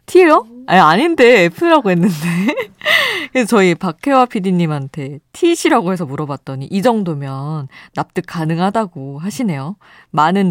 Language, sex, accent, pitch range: Korean, female, native, 145-220 Hz